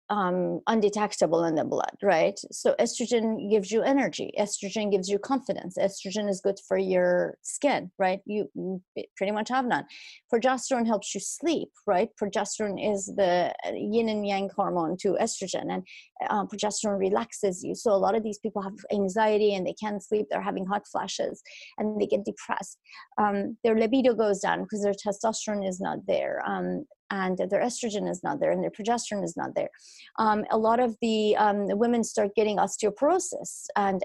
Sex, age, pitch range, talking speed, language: female, 30-49, 200-250 Hz, 180 wpm, English